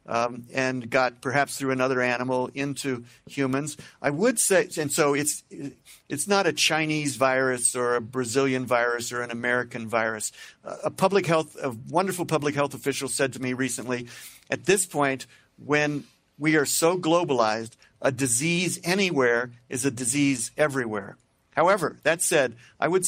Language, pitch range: Portuguese, 130-155 Hz